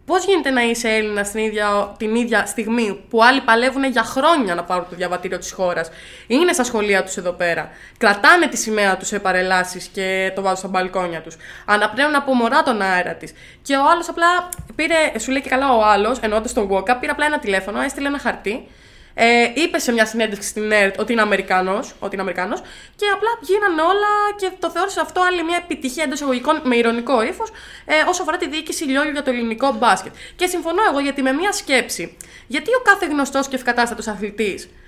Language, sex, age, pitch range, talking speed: Greek, female, 20-39, 205-285 Hz, 200 wpm